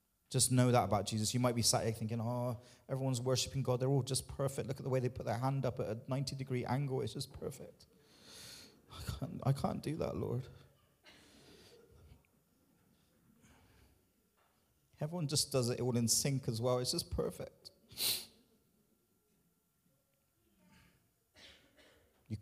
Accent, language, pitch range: British, English, 100-130 Hz